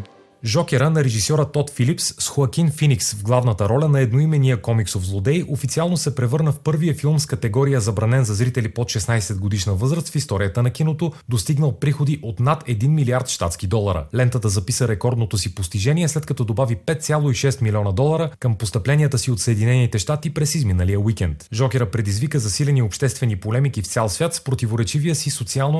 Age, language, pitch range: 30-49, Bulgarian, 110-145 Hz